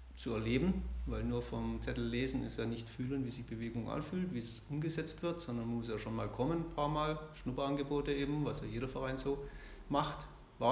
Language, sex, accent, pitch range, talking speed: German, male, German, 120-145 Hz, 205 wpm